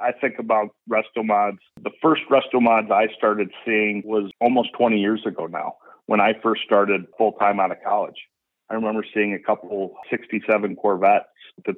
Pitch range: 95-110 Hz